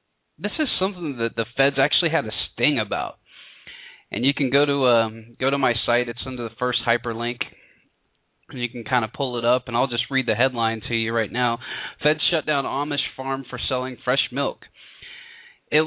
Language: English